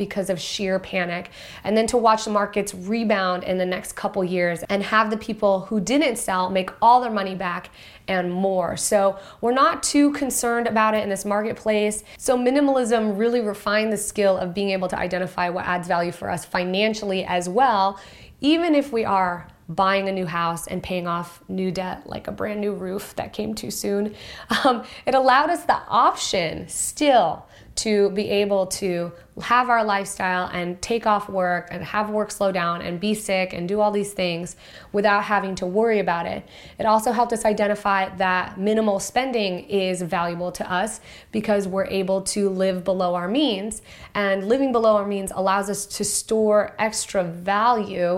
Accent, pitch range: American, 185-215 Hz